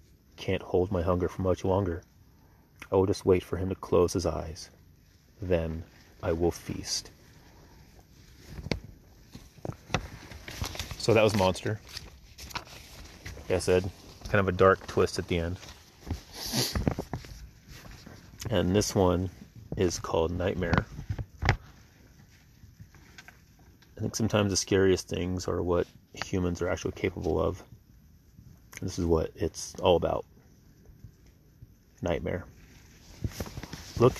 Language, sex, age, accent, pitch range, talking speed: English, male, 30-49, American, 85-95 Hz, 110 wpm